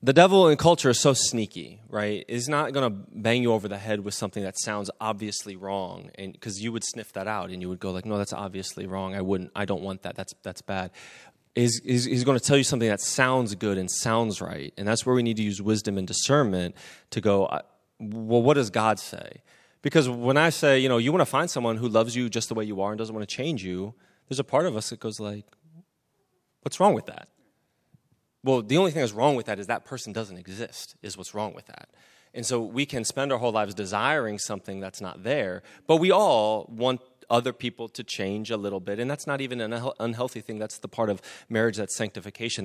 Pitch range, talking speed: 100-130 Hz, 240 wpm